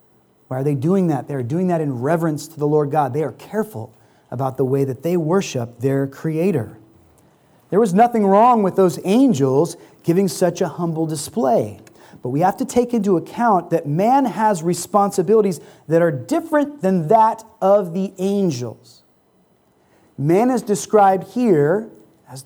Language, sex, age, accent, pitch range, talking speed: English, male, 30-49, American, 145-210 Hz, 165 wpm